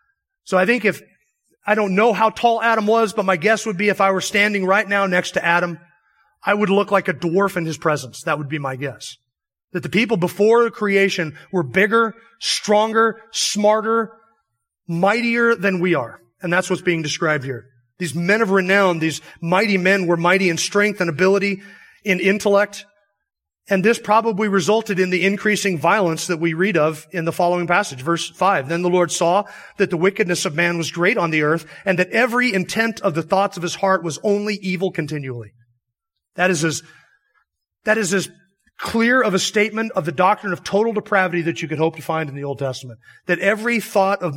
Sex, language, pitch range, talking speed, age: male, English, 170-210 Hz, 200 wpm, 30-49